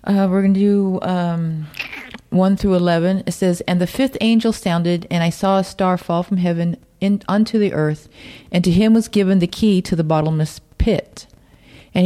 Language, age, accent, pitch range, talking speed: English, 40-59, American, 165-205 Hz, 195 wpm